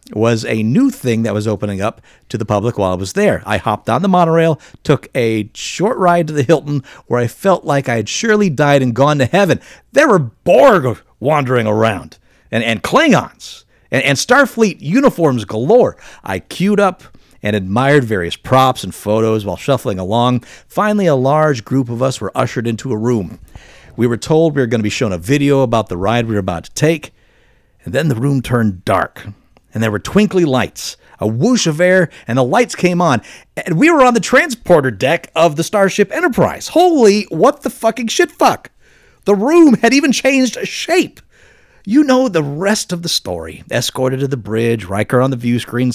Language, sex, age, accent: English, male, 50-69, American